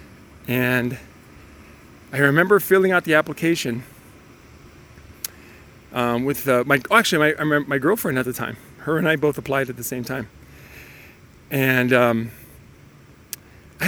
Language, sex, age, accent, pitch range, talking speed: English, male, 40-59, American, 120-155 Hz, 130 wpm